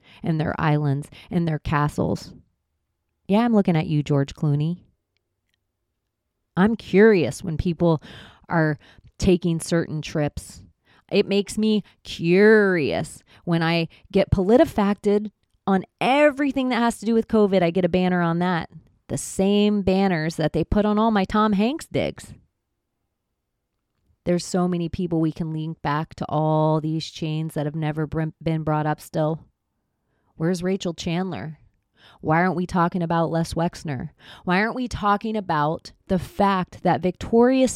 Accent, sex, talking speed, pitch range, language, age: American, female, 150 wpm, 150-195 Hz, English, 30-49